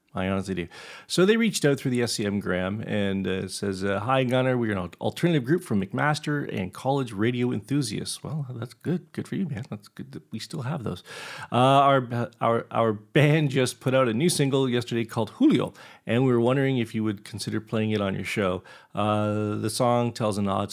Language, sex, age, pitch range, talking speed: English, male, 40-59, 100-135 Hz, 215 wpm